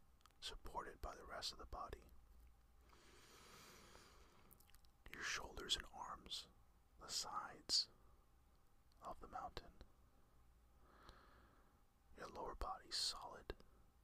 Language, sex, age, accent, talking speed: English, male, 40-59, American, 85 wpm